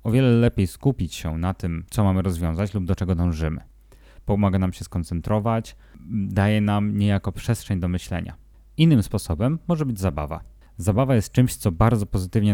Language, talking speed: Polish, 165 wpm